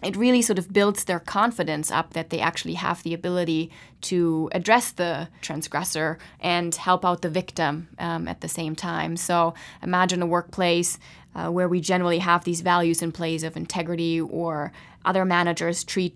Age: 20-39